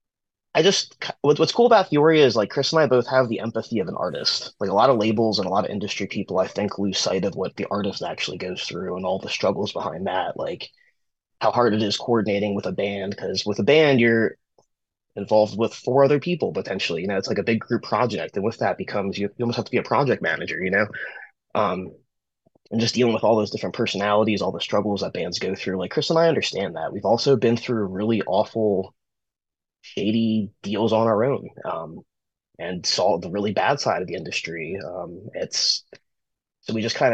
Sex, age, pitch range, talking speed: male, 20-39, 100-120 Hz, 225 wpm